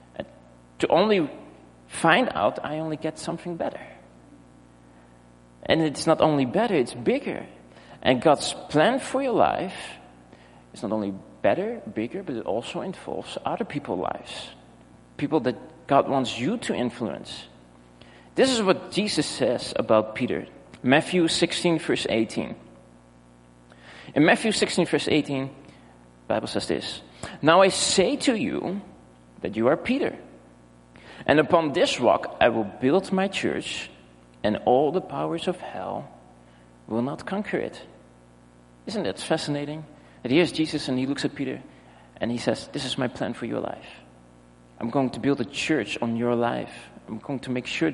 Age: 40-59